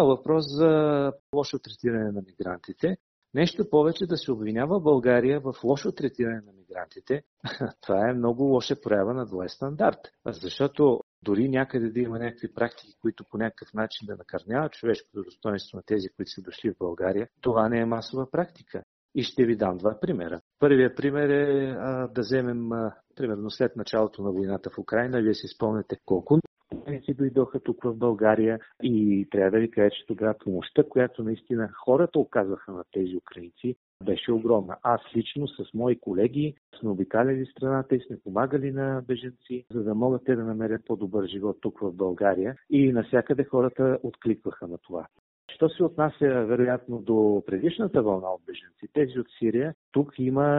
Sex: male